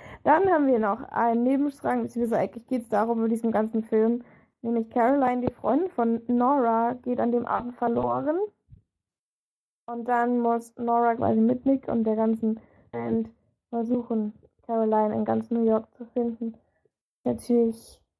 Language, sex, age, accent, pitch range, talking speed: German, female, 10-29, German, 225-250 Hz, 150 wpm